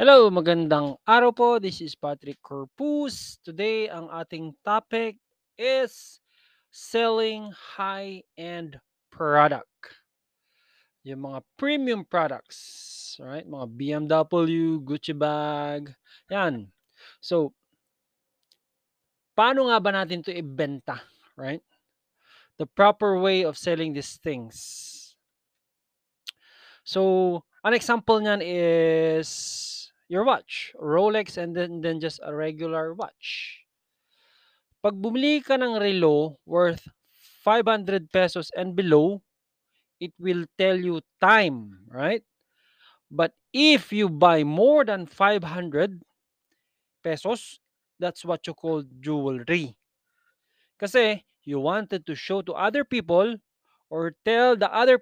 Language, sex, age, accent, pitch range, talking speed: Filipino, male, 20-39, native, 155-215 Hz, 105 wpm